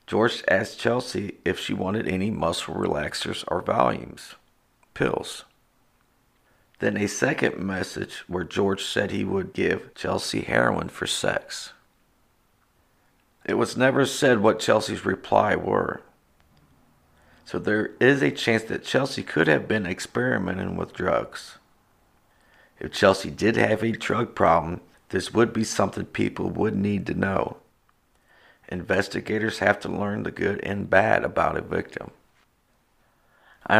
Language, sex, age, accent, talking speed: English, male, 50-69, American, 135 wpm